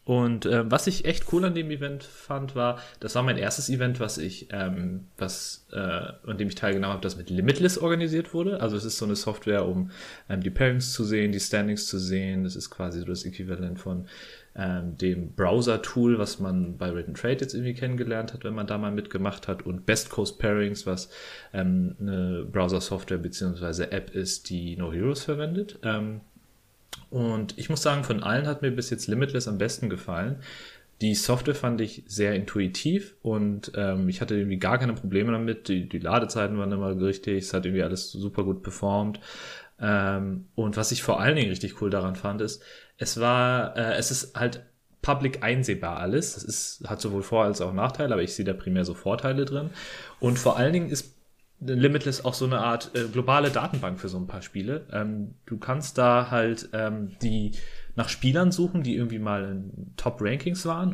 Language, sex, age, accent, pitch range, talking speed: German, male, 30-49, German, 95-125 Hz, 200 wpm